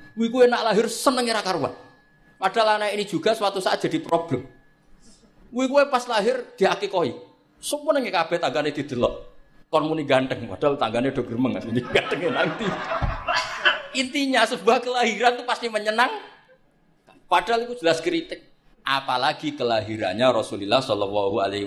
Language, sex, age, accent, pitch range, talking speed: Indonesian, male, 50-69, native, 150-220 Hz, 130 wpm